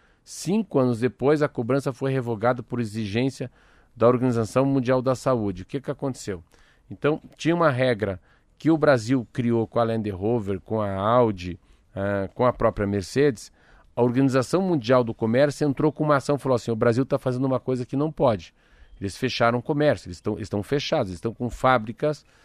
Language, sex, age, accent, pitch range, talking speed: Portuguese, male, 50-69, Brazilian, 110-140 Hz, 180 wpm